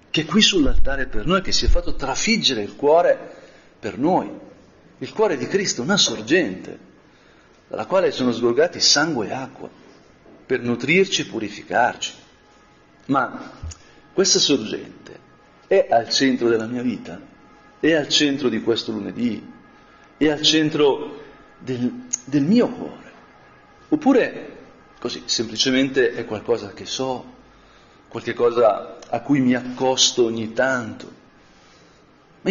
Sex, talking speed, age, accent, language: male, 130 wpm, 50-69, native, Italian